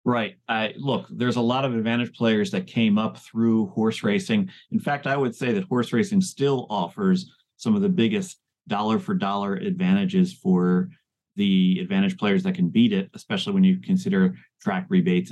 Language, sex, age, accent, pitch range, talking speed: English, male, 30-49, American, 120-195 Hz, 185 wpm